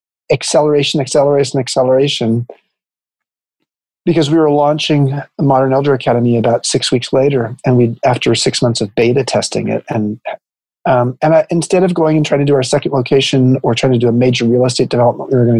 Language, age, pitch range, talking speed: English, 40-59, 120-150 Hz, 190 wpm